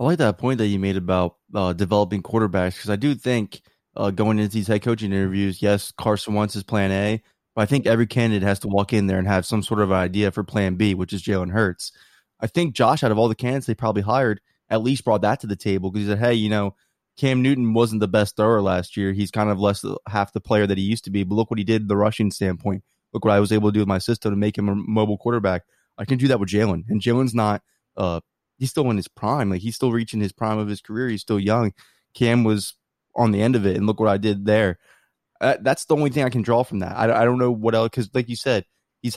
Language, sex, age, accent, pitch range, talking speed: English, male, 20-39, American, 100-115 Hz, 275 wpm